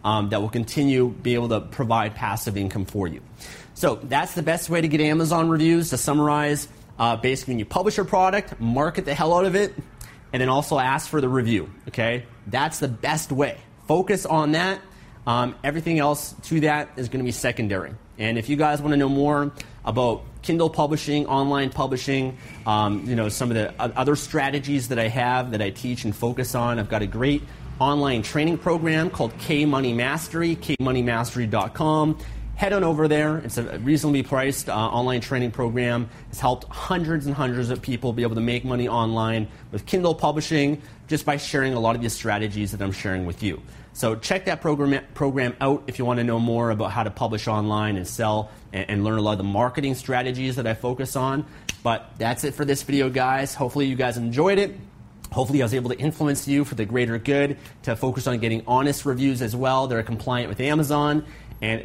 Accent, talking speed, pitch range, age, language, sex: American, 205 wpm, 115-145 Hz, 30-49, English, male